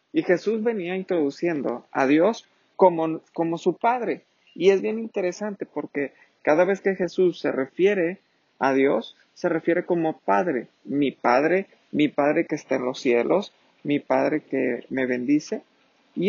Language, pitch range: Spanish, 135-180 Hz